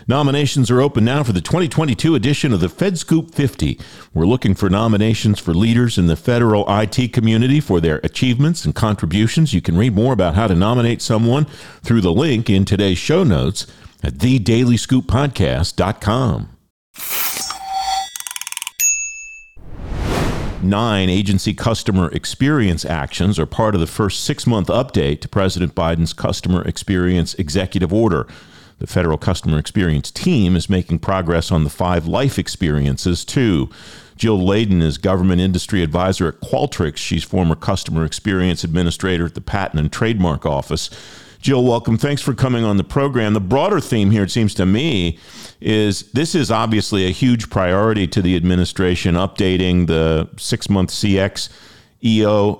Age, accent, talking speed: 50-69, American, 150 wpm